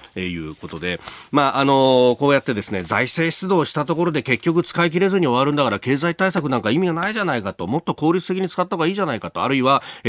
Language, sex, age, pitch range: Japanese, male, 40-59, 115-190 Hz